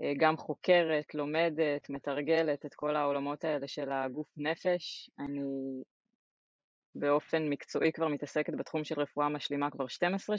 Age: 20-39